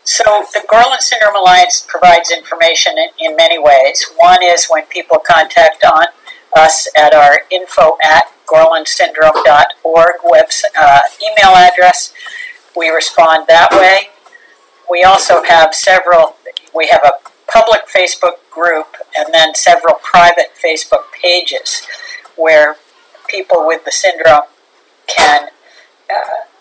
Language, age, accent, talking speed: English, 60-79, American, 120 wpm